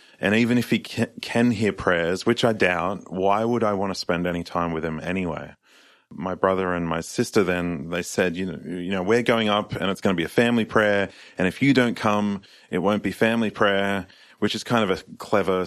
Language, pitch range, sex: English, 85-105 Hz, male